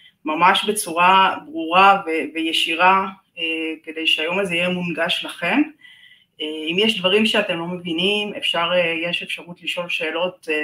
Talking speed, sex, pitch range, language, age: 145 wpm, female, 160-195 Hz, Hebrew, 30-49